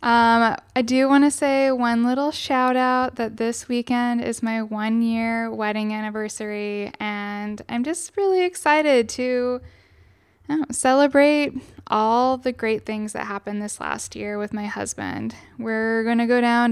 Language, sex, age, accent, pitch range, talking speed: English, female, 10-29, American, 215-270 Hz, 145 wpm